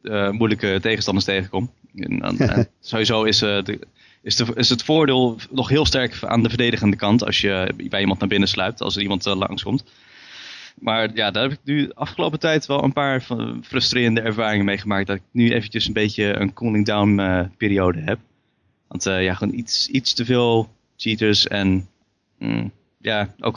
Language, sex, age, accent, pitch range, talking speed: Dutch, male, 20-39, Dutch, 100-120 Hz, 190 wpm